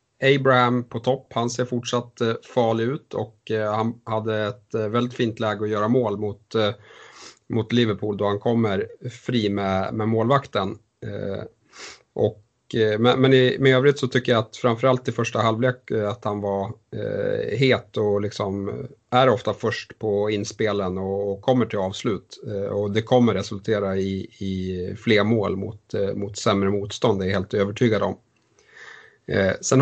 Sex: male